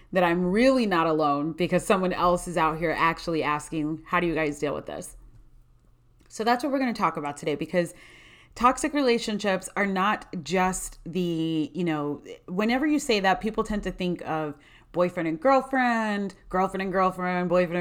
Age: 30-49